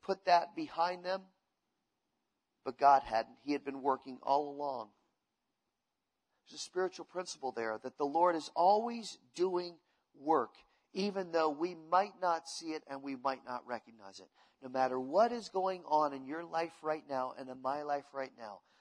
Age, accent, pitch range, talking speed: 40-59, American, 155-220 Hz, 175 wpm